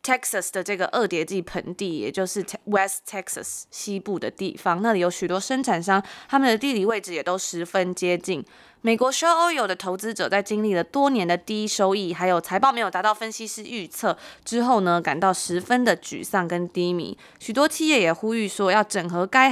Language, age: Chinese, 20-39